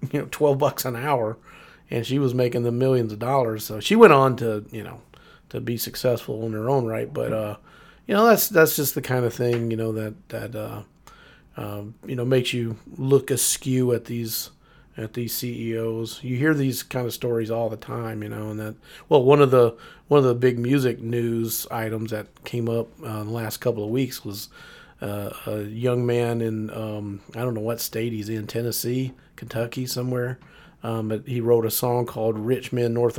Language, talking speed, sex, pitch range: English, 215 wpm, male, 110-130 Hz